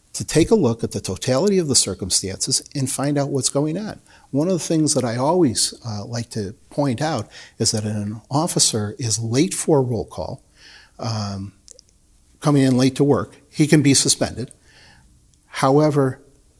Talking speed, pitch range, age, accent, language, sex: 175 wpm, 110-145 Hz, 50-69, American, English, male